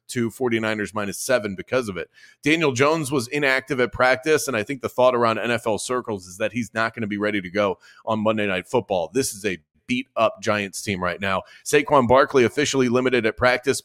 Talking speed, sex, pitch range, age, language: 210 wpm, male, 110-135 Hz, 30-49, English